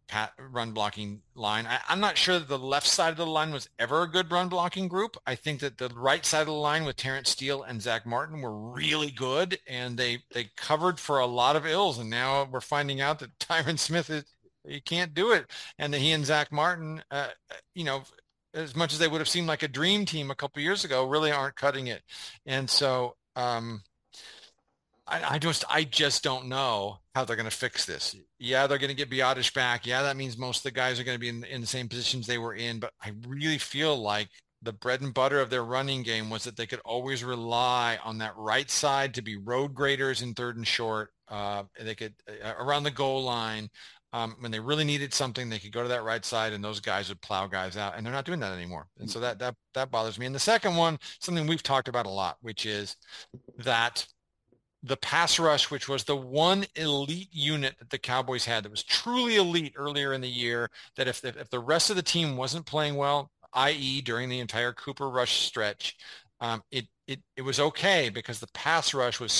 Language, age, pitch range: English, 40-59, 120-150 Hz